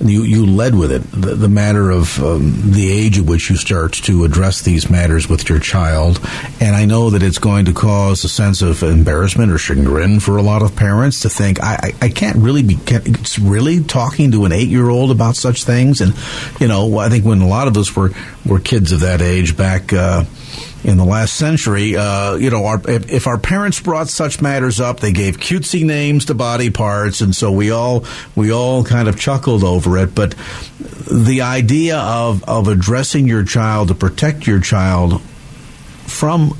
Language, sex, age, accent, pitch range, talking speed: English, male, 50-69, American, 95-130 Hz, 205 wpm